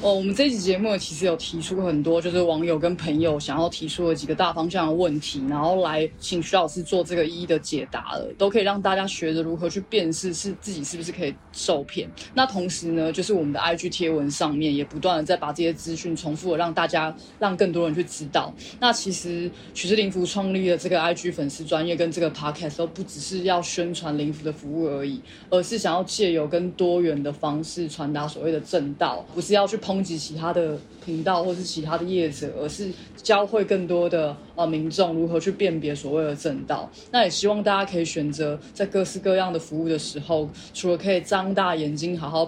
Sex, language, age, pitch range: female, Chinese, 20-39, 160-185 Hz